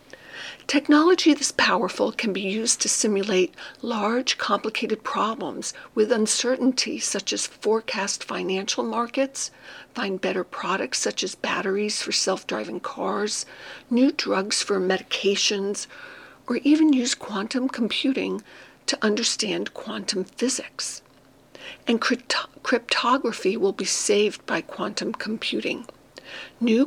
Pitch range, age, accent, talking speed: 200-265 Hz, 60-79, American, 110 wpm